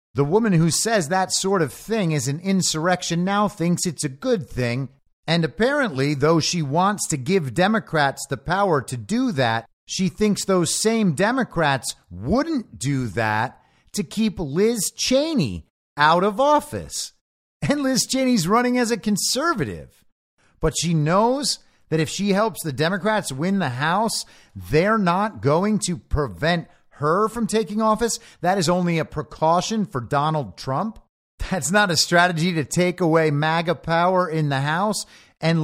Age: 50-69